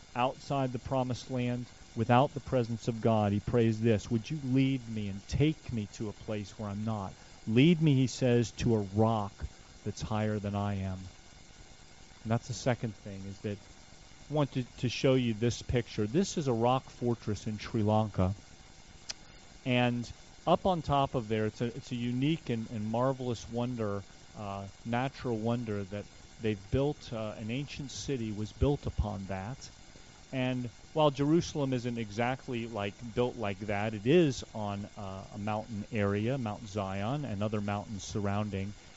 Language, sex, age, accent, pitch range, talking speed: English, male, 40-59, American, 100-125 Hz, 170 wpm